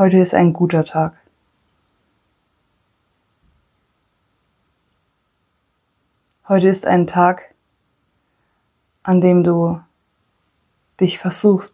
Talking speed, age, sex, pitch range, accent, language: 70 wpm, 20-39, female, 115-180 Hz, German, German